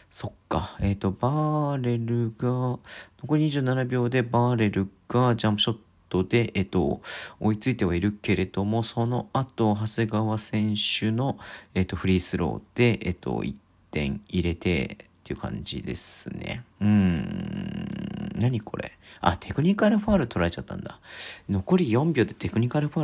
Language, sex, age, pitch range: Japanese, male, 40-59, 95-125 Hz